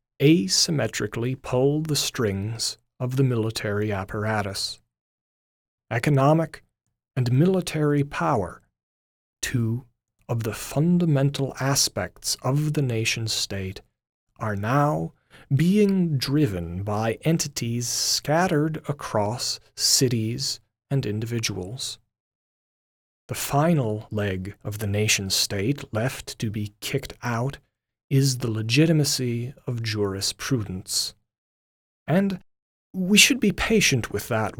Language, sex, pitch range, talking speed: English, male, 105-140 Hz, 95 wpm